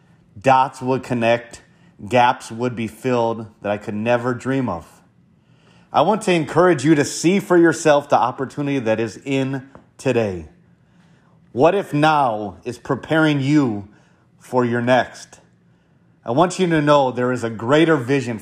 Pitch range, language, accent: 115-150 Hz, English, American